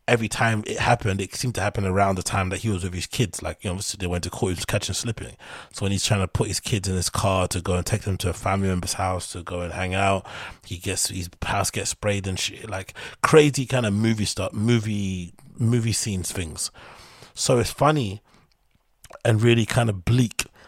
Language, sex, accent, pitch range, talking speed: English, male, British, 90-105 Hz, 230 wpm